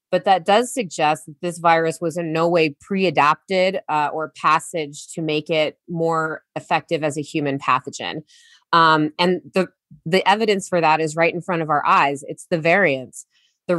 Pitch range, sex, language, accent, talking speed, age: 160-185 Hz, female, English, American, 180 wpm, 20-39